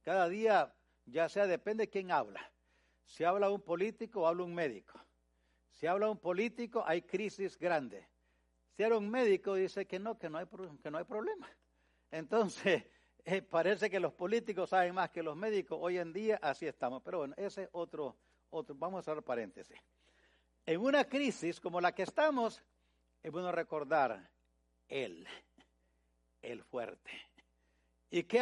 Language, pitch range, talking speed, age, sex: English, 155-205 Hz, 165 wpm, 60-79, male